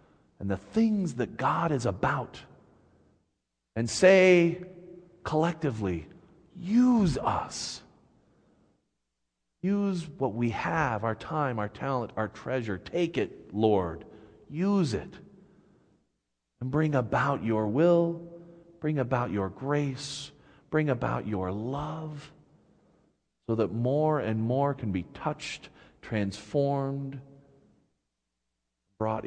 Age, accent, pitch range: 50-69, American, 105-160 Hz